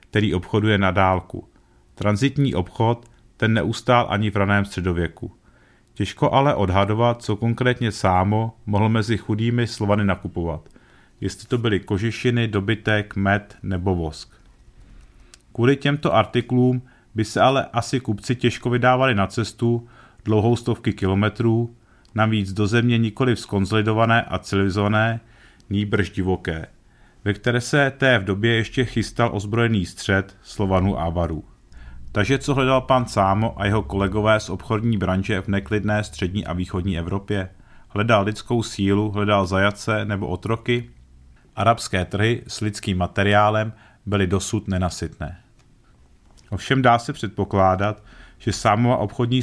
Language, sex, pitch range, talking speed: Czech, male, 100-120 Hz, 130 wpm